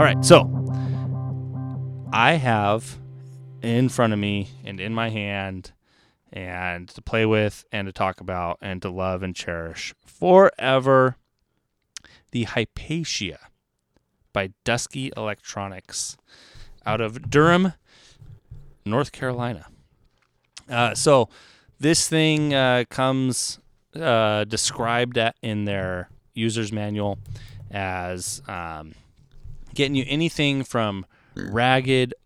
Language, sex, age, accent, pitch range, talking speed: English, male, 20-39, American, 100-130 Hz, 105 wpm